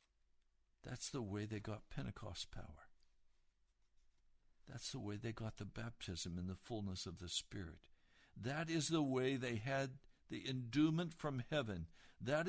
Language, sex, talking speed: English, male, 150 wpm